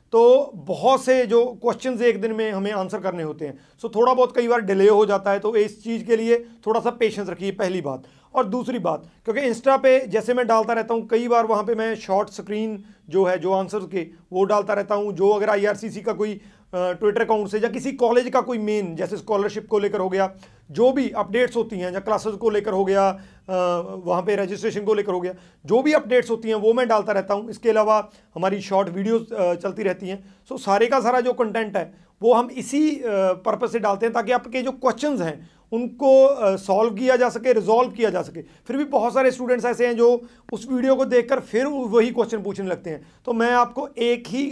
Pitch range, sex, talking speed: 195-245 Hz, male, 225 wpm